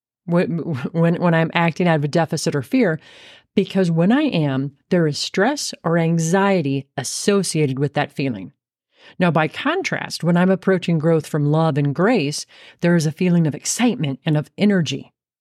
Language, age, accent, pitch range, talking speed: English, 40-59, American, 150-195 Hz, 170 wpm